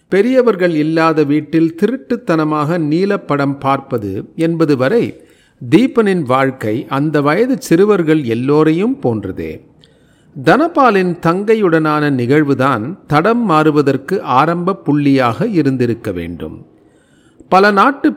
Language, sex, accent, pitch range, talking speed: Tamil, male, native, 135-175 Hz, 90 wpm